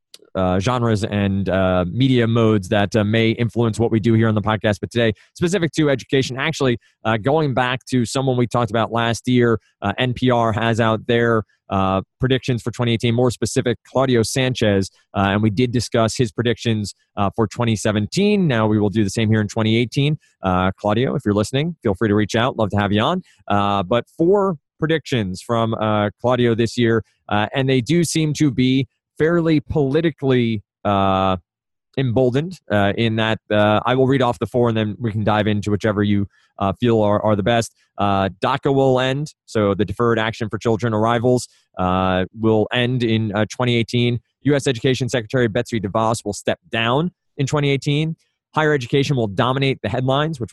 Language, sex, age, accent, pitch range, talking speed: English, male, 30-49, American, 105-130 Hz, 190 wpm